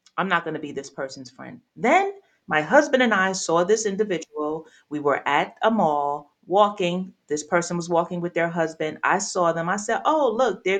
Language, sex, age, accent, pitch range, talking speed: English, female, 30-49, American, 160-220 Hz, 205 wpm